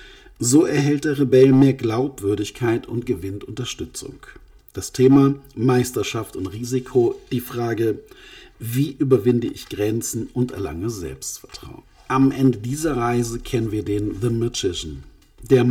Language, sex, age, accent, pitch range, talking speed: German, male, 50-69, German, 105-135 Hz, 125 wpm